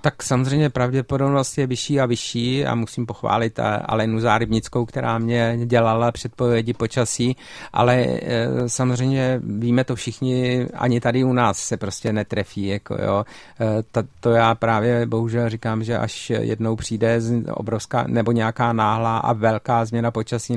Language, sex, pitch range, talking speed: Czech, male, 110-120 Hz, 135 wpm